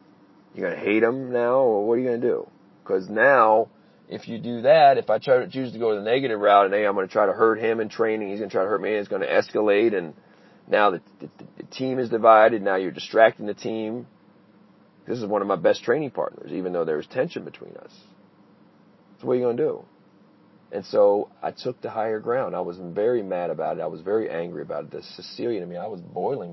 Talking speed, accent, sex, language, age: 250 wpm, American, male, English, 40-59